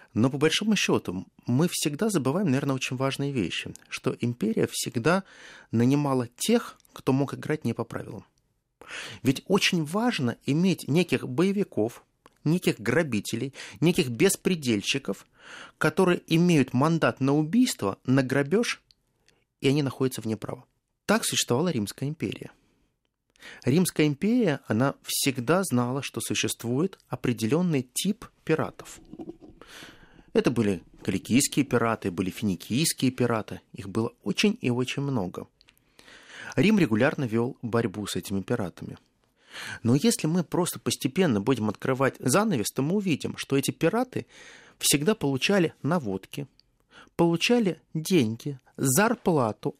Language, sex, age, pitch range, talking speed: Russian, male, 30-49, 115-170 Hz, 120 wpm